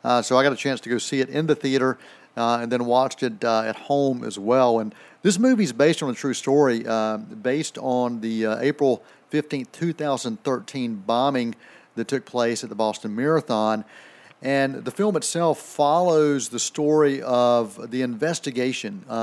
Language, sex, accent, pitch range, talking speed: English, male, American, 120-145 Hz, 180 wpm